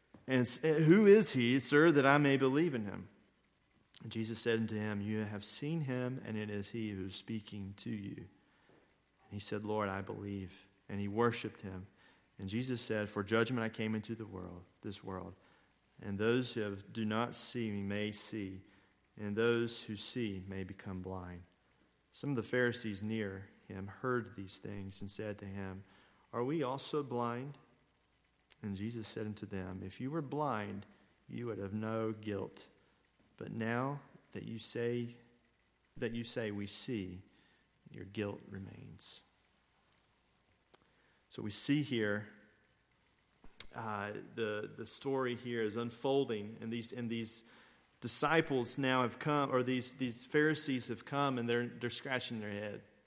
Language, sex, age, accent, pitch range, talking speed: English, male, 40-59, American, 100-125 Hz, 160 wpm